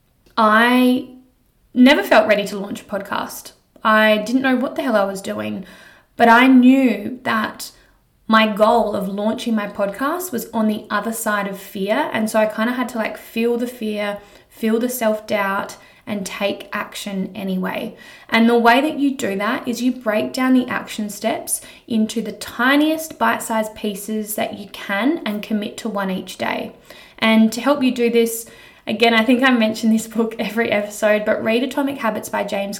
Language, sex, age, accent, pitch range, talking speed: English, female, 20-39, Australian, 210-240 Hz, 185 wpm